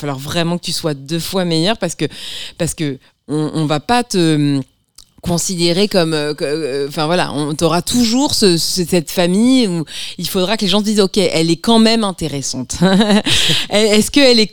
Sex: female